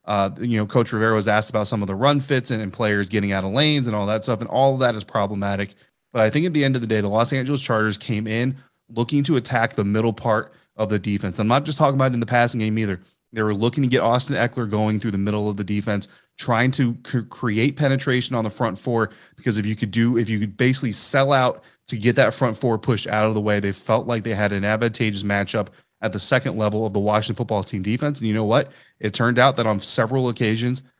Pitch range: 105-125 Hz